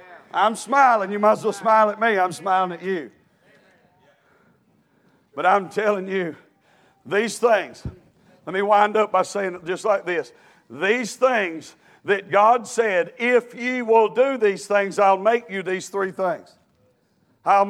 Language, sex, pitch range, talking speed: English, male, 205-255 Hz, 160 wpm